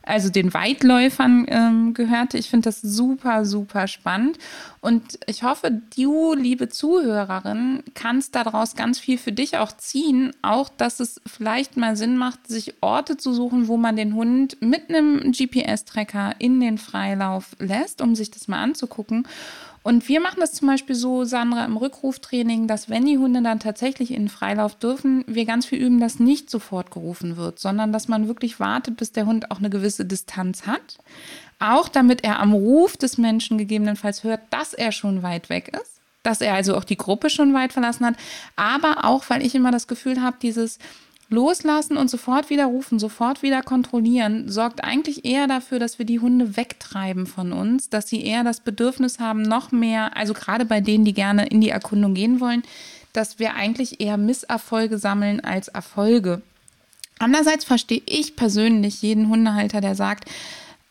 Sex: female